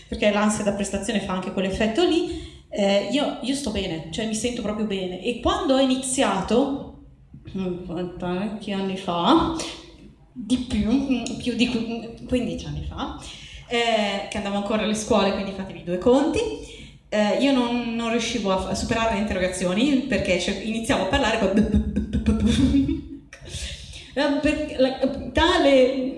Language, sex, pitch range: Italian, female, 195-260 Hz